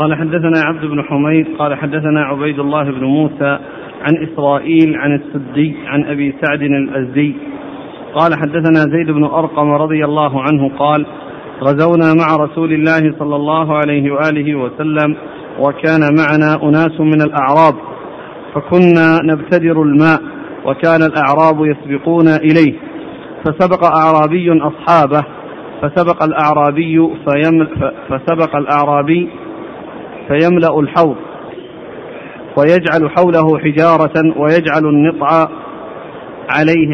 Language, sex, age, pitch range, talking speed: Arabic, male, 50-69, 150-165 Hz, 105 wpm